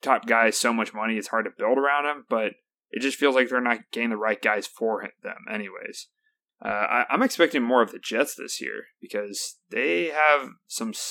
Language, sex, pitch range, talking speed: English, male, 110-165 Hz, 210 wpm